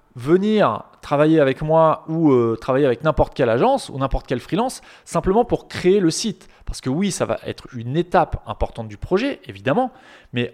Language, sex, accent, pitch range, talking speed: French, male, French, 120-175 Hz, 190 wpm